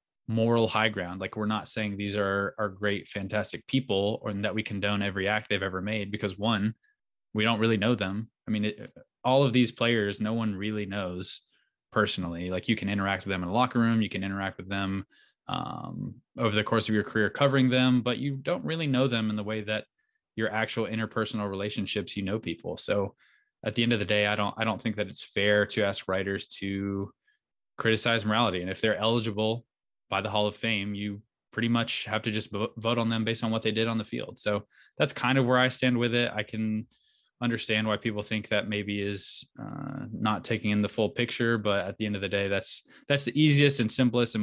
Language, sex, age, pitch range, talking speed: English, male, 20-39, 100-115 Hz, 225 wpm